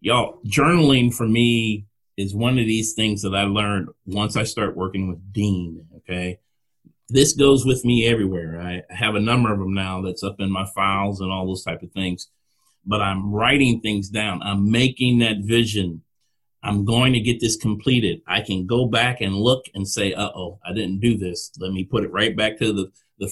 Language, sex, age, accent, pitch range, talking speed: English, male, 30-49, American, 95-120 Hz, 205 wpm